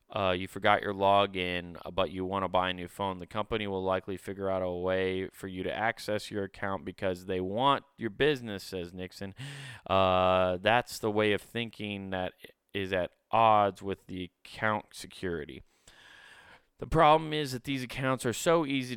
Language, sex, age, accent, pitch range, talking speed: English, male, 20-39, American, 95-115 Hz, 180 wpm